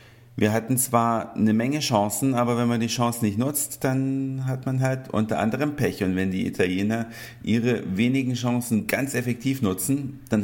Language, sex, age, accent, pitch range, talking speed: German, male, 50-69, German, 110-135 Hz, 180 wpm